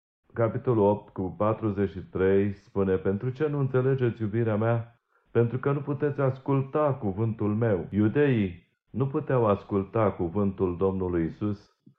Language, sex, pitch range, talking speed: Romanian, male, 100-125 Hz, 125 wpm